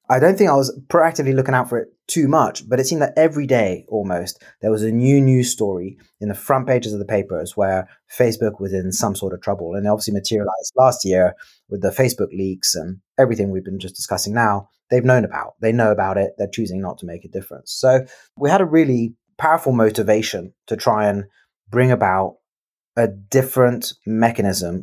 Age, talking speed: 30-49, 210 wpm